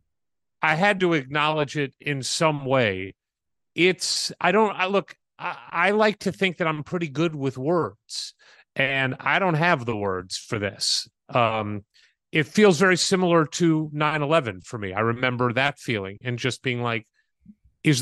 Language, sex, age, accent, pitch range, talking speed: English, male, 40-59, American, 120-160 Hz, 165 wpm